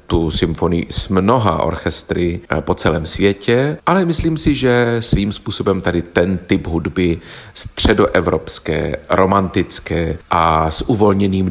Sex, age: male, 40-59